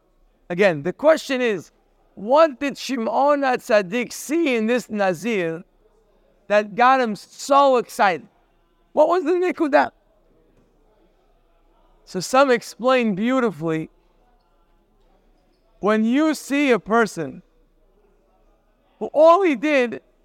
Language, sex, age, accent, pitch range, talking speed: English, male, 50-69, American, 215-310 Hz, 100 wpm